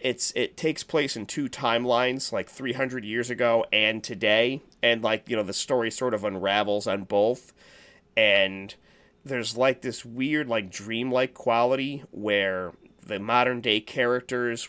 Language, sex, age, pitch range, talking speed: English, male, 30-49, 100-120 Hz, 145 wpm